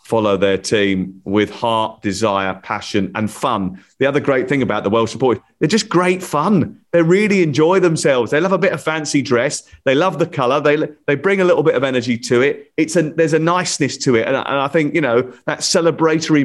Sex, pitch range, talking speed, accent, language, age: male, 105-145 Hz, 225 wpm, British, English, 30-49